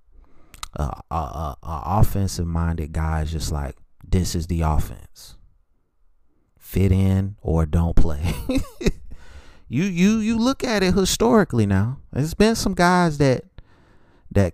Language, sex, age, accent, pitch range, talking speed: English, male, 30-49, American, 80-100 Hz, 130 wpm